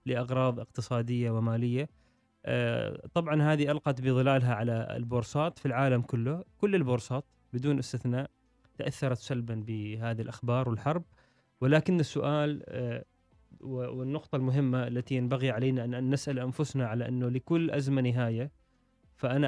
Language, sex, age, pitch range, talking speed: Arabic, male, 20-39, 125-155 Hz, 115 wpm